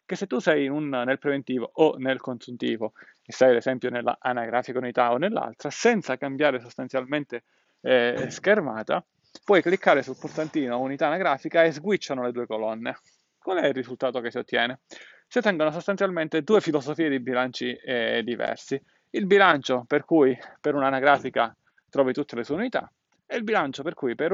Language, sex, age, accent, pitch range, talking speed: Italian, male, 30-49, native, 125-155 Hz, 170 wpm